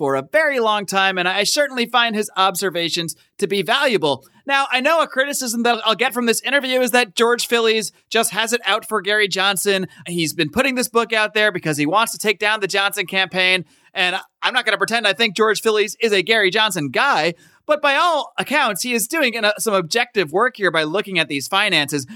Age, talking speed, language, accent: 30-49, 225 wpm, English, American